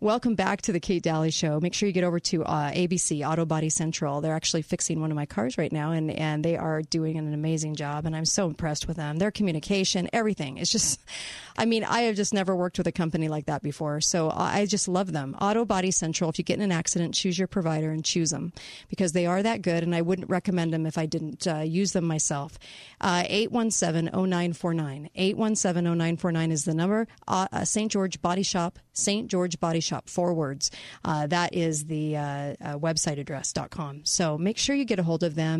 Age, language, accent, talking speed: 40-59, English, American, 215 wpm